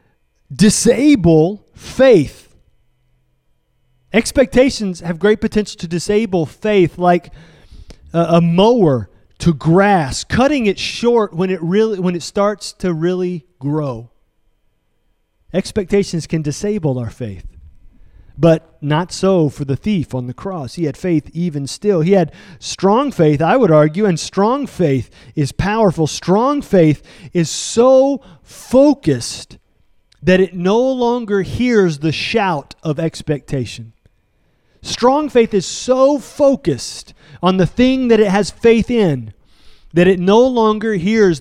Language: English